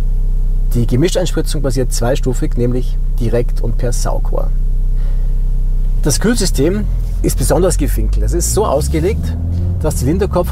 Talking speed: 115 wpm